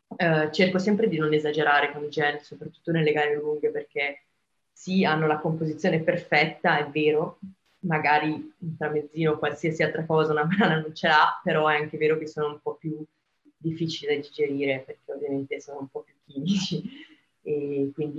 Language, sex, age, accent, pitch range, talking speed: Italian, female, 20-39, native, 145-170 Hz, 180 wpm